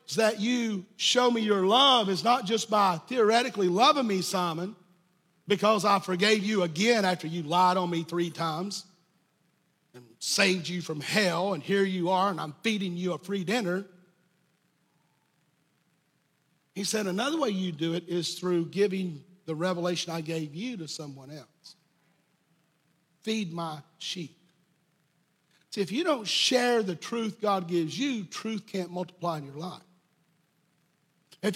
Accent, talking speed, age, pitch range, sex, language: American, 155 wpm, 50-69, 170-220 Hz, male, English